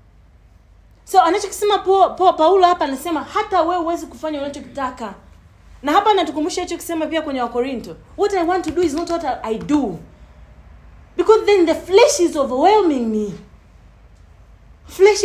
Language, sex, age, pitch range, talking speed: English, female, 40-59, 240-360 Hz, 155 wpm